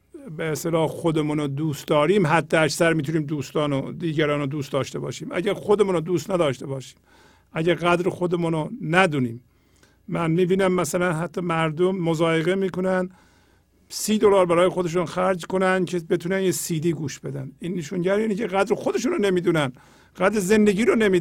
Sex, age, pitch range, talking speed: male, 50-69, 160-195 Hz, 165 wpm